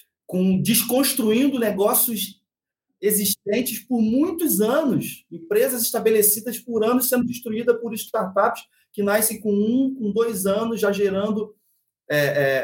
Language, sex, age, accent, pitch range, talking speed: Portuguese, male, 40-59, Brazilian, 160-220 Hz, 125 wpm